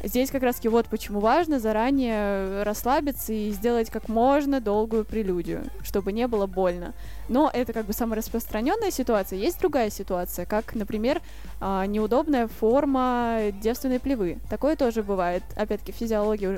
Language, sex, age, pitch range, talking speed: Russian, female, 10-29, 205-250 Hz, 140 wpm